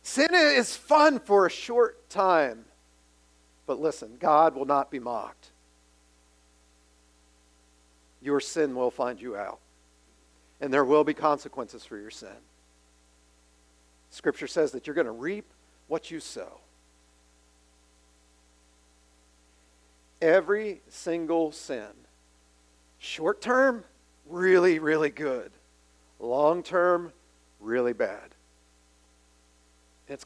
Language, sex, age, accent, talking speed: English, male, 50-69, American, 100 wpm